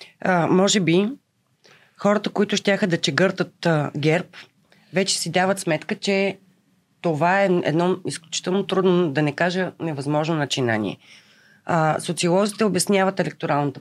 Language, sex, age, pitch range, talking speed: Bulgarian, female, 30-49, 155-200 Hz, 125 wpm